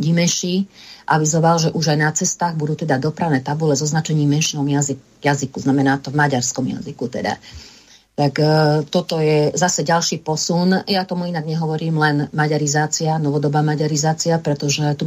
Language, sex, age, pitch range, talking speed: Slovak, female, 40-59, 145-175 Hz, 160 wpm